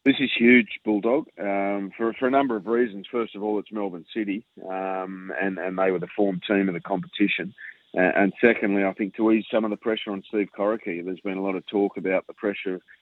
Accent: Australian